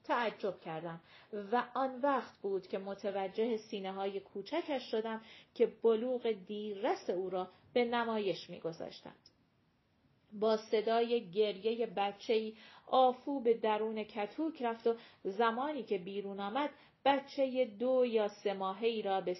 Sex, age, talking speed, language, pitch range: female, 40-59, 135 wpm, Persian, 200-245 Hz